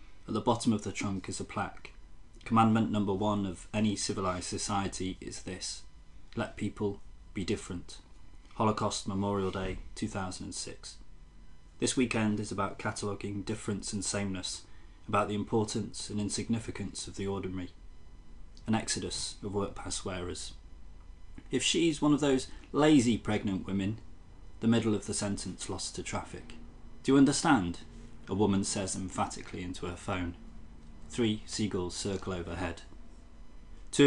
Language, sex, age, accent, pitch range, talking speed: English, male, 30-49, British, 90-105 Hz, 140 wpm